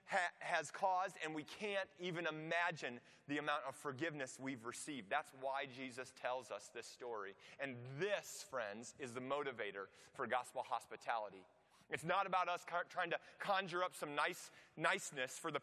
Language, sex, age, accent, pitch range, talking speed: English, male, 30-49, American, 150-195 Hz, 155 wpm